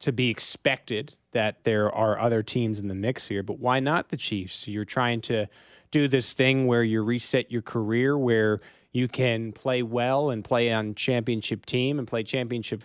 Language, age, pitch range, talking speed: English, 30-49, 110-135 Hz, 190 wpm